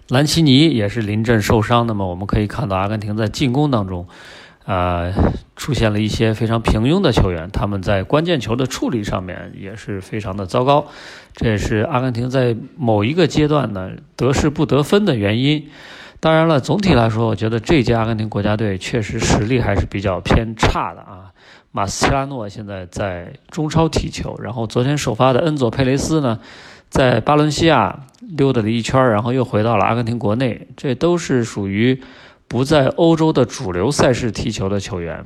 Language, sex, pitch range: Chinese, male, 105-130 Hz